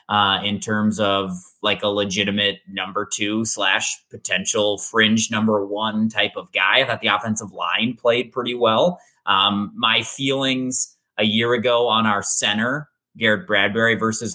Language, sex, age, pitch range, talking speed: English, male, 20-39, 105-140 Hz, 155 wpm